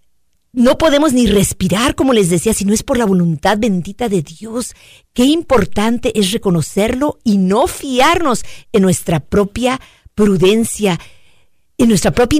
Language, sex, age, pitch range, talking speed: Spanish, female, 50-69, 195-260 Hz, 145 wpm